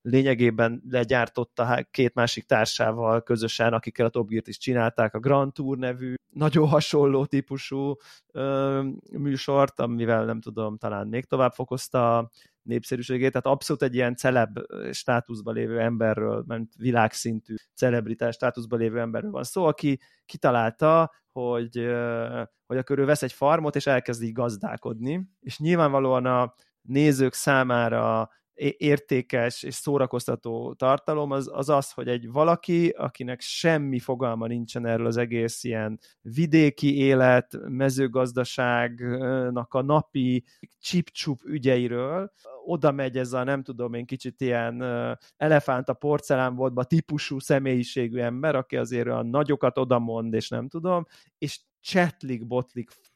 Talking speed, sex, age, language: 130 wpm, male, 20-39, Hungarian